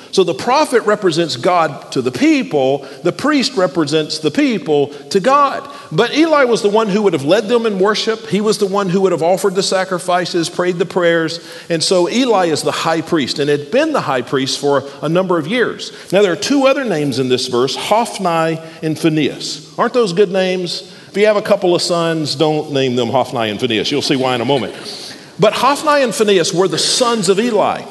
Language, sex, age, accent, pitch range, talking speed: English, male, 50-69, American, 150-215 Hz, 220 wpm